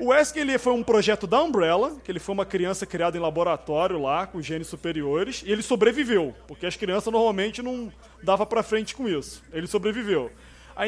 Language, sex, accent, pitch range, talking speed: Portuguese, male, Brazilian, 185-255 Hz, 200 wpm